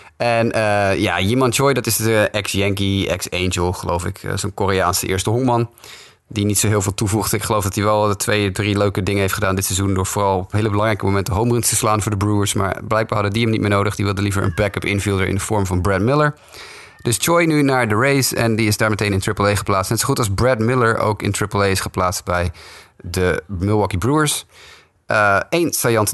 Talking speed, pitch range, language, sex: 230 wpm, 95-115 Hz, Dutch, male